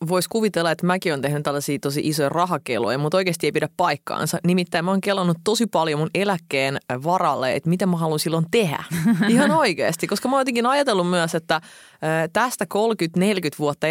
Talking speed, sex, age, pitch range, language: 180 wpm, female, 20-39, 150-190 Hz, Finnish